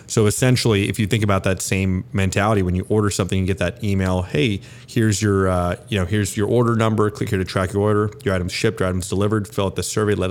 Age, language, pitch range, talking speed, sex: 30-49, English, 95-115 Hz, 255 wpm, male